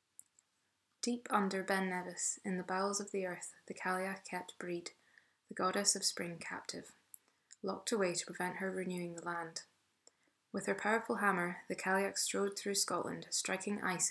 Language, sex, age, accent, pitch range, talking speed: English, female, 20-39, British, 175-200 Hz, 160 wpm